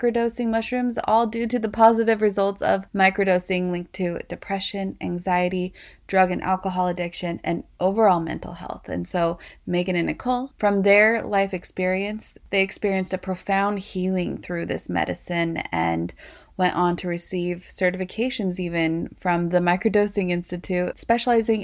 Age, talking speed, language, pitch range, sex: 20-39, 140 wpm, English, 180-225 Hz, female